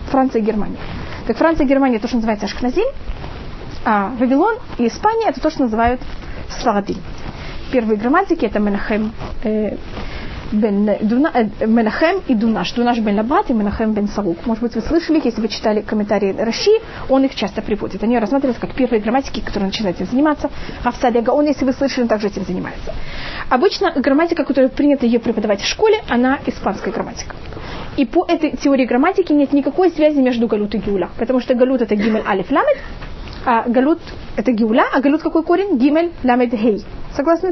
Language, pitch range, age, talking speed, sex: Russian, 225-295 Hz, 30-49, 180 wpm, female